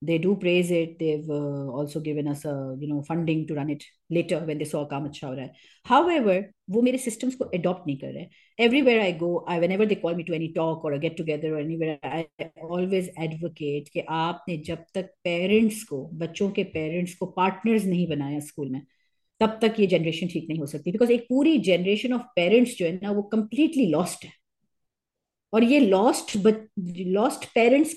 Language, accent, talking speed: English, Indian, 160 wpm